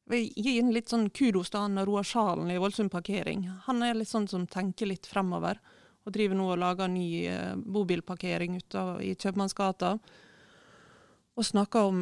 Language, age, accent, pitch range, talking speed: English, 30-49, Swedish, 180-205 Hz, 155 wpm